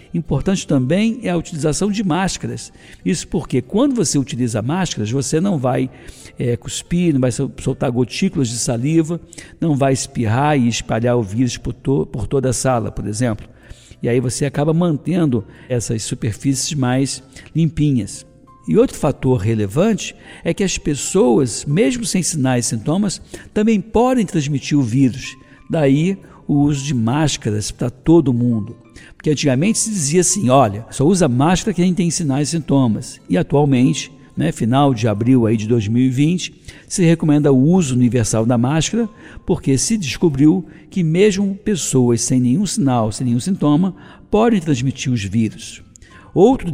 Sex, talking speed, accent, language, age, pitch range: male, 150 wpm, Brazilian, Portuguese, 60-79, 125-165 Hz